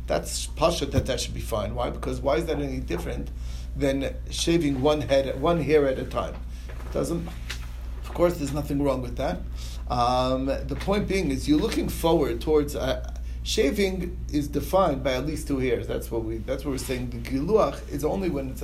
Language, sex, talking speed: English, male, 205 wpm